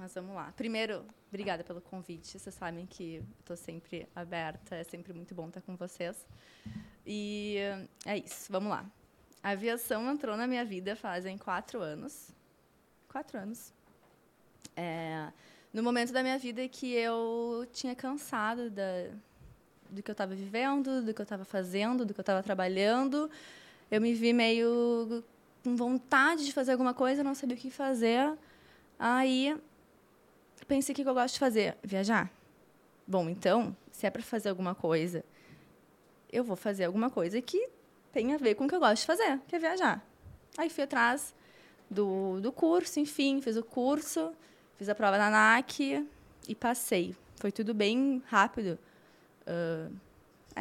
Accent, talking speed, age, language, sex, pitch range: Brazilian, 160 wpm, 20-39, Portuguese, female, 195-250 Hz